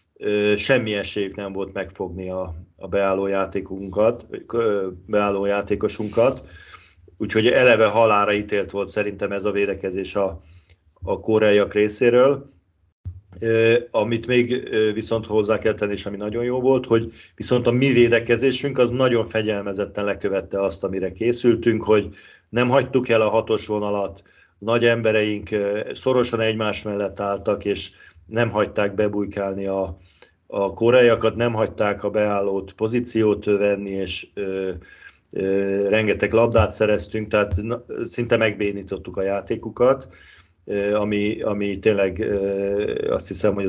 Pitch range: 100-115 Hz